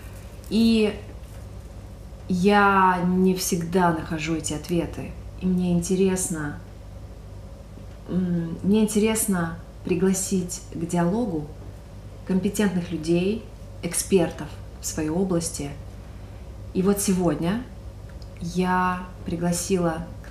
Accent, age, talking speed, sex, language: native, 30-49, 75 wpm, female, Russian